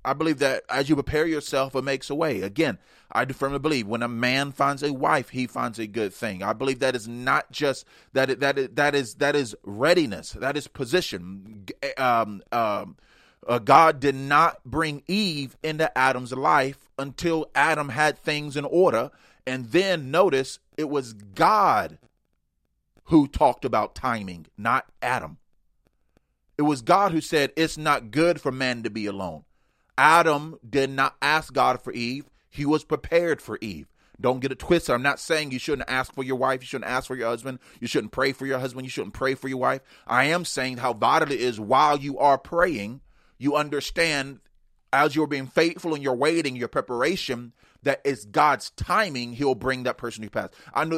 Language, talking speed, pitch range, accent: English, 190 wpm, 125-155 Hz, American